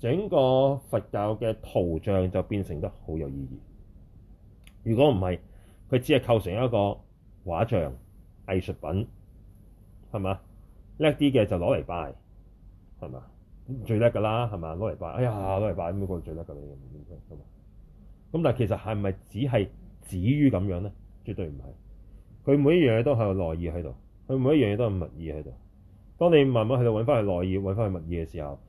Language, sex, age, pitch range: Chinese, male, 30-49, 95-120 Hz